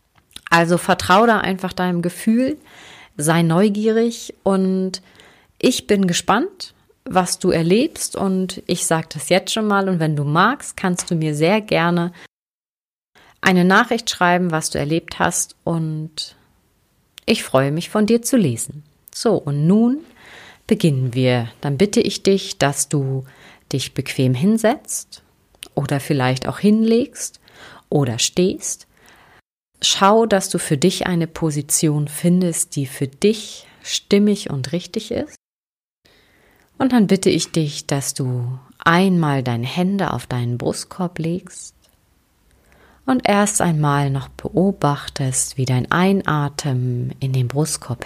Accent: German